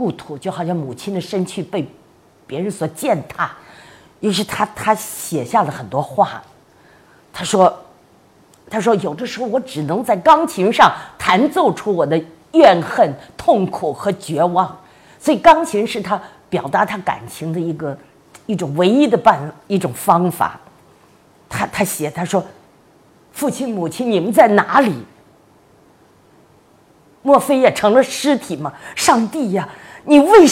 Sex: female